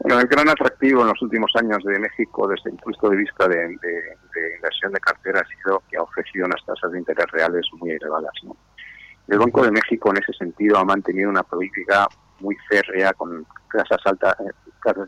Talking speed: 185 wpm